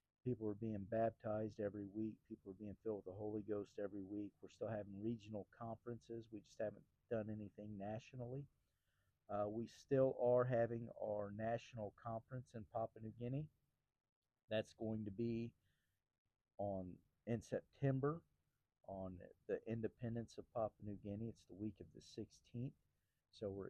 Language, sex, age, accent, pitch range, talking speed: English, male, 50-69, American, 100-115 Hz, 155 wpm